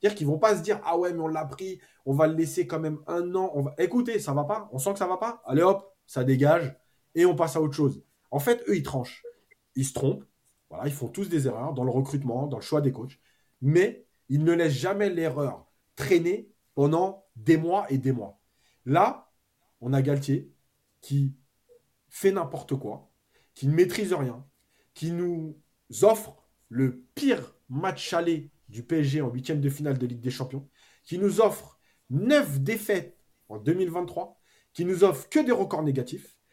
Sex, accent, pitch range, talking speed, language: male, French, 130-185 Hz, 205 wpm, French